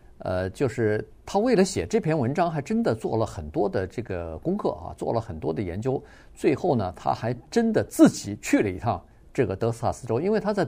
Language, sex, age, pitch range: Chinese, male, 50-69, 110-150 Hz